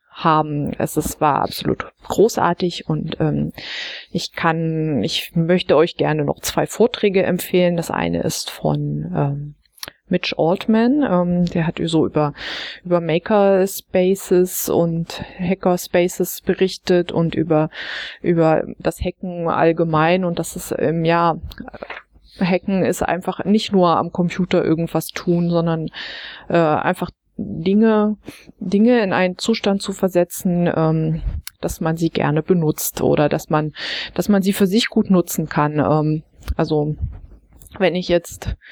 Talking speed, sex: 135 wpm, female